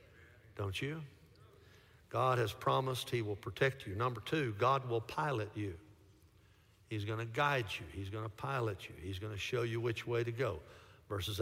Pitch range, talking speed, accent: 100-160 Hz, 185 wpm, American